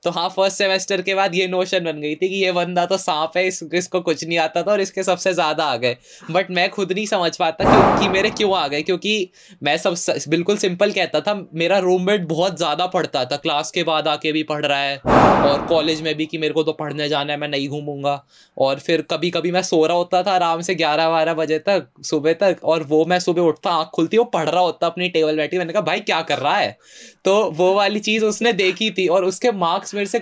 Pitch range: 155-195 Hz